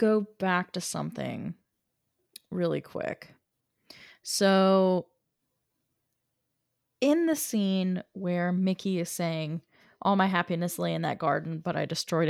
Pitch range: 175-230 Hz